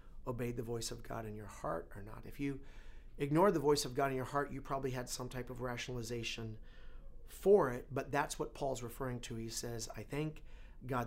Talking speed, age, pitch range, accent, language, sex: 215 wpm, 40-59, 120-170 Hz, American, English, male